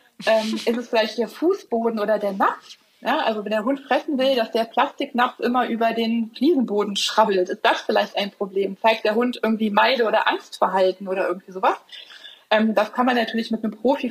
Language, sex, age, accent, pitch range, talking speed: German, female, 20-39, German, 205-250 Hz, 200 wpm